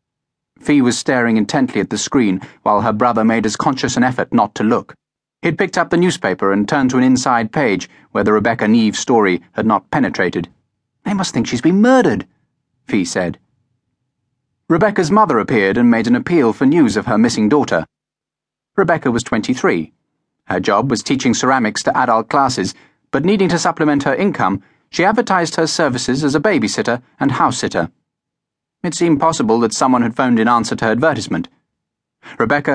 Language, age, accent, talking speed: English, 30-49, British, 180 wpm